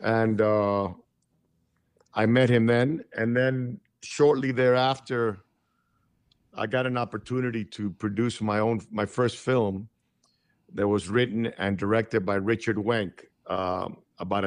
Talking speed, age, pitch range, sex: 130 wpm, 50-69, 100-115 Hz, male